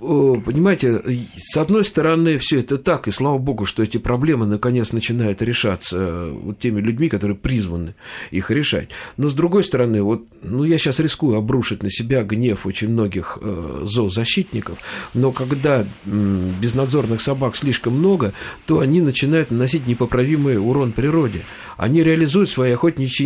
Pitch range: 105-150 Hz